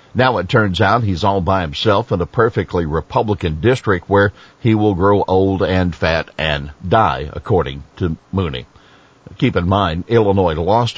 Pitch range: 90-115 Hz